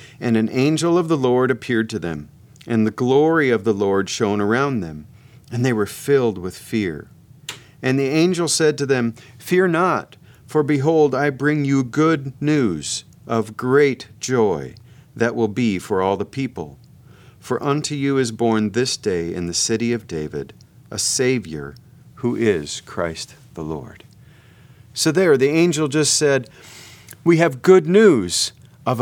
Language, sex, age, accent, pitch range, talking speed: English, male, 40-59, American, 115-145 Hz, 165 wpm